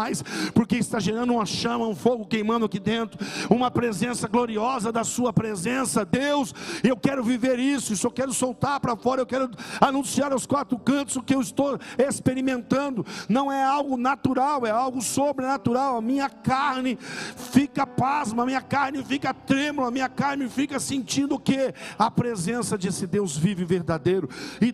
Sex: male